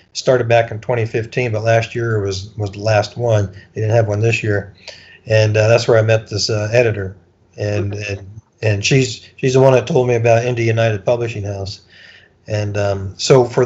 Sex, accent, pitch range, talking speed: male, American, 105-120 Hz, 200 wpm